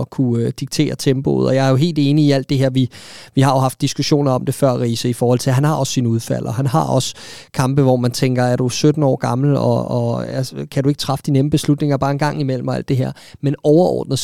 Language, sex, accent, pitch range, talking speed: Danish, male, native, 135-155 Hz, 270 wpm